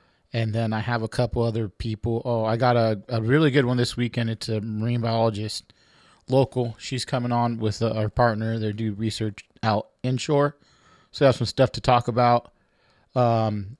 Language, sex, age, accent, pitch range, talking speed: English, male, 30-49, American, 110-125 Hz, 185 wpm